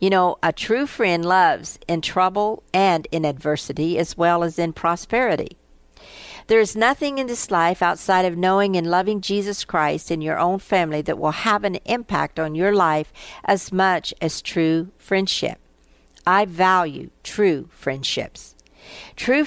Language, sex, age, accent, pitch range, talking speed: English, female, 50-69, American, 155-195 Hz, 155 wpm